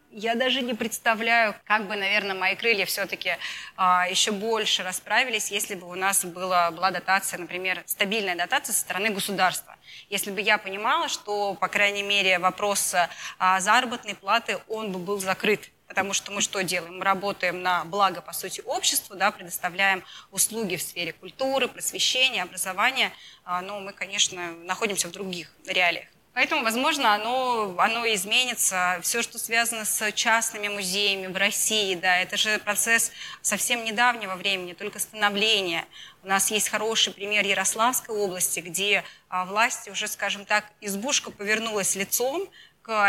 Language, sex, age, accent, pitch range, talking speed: Russian, female, 20-39, native, 185-225 Hz, 150 wpm